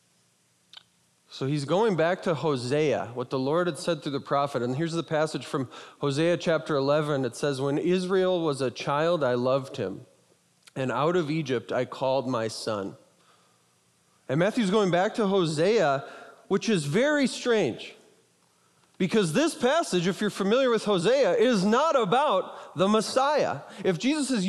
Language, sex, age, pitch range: English, male, 30-49, 135-200 Hz